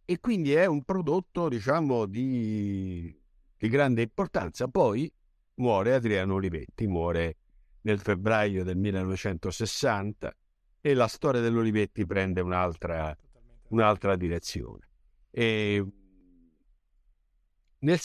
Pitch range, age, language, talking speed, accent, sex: 90-140 Hz, 60-79, Italian, 85 wpm, native, male